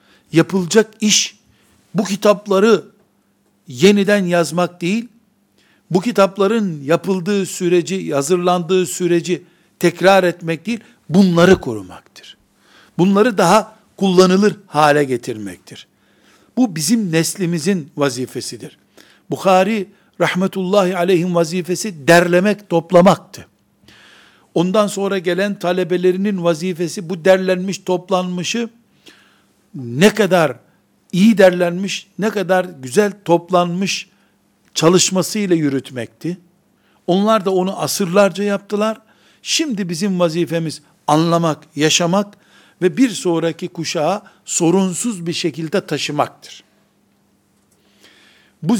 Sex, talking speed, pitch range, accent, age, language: male, 85 wpm, 170-200 Hz, native, 60-79, Turkish